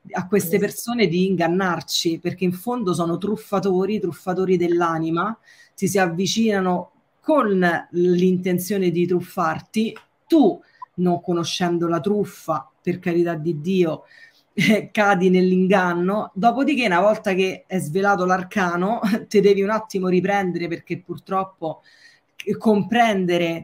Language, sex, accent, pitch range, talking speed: Italian, female, native, 175-205 Hz, 120 wpm